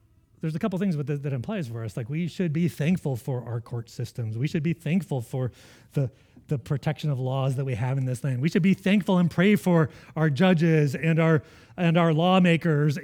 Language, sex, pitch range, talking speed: English, male, 130-180 Hz, 220 wpm